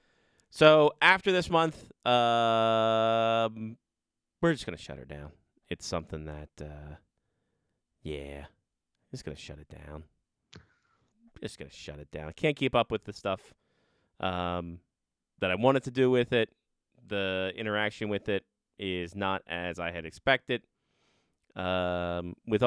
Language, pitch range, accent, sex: English, 90-120 Hz, American, male